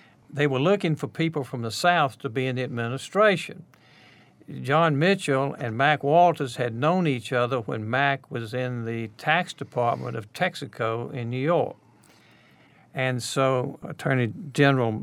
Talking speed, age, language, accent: 150 wpm, 60-79, English, American